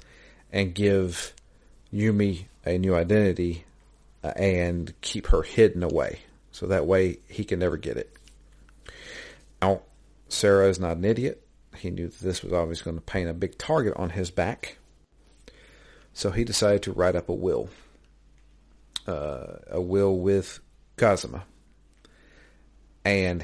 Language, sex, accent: English, male, American